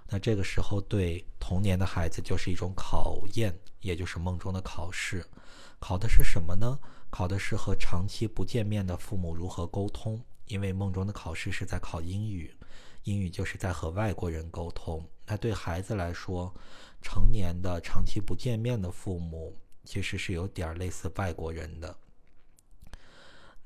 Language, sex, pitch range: Chinese, male, 90-105 Hz